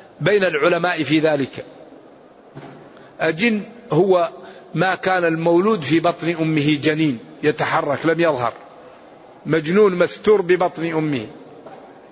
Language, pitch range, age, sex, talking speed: Arabic, 155-195 Hz, 50-69, male, 100 wpm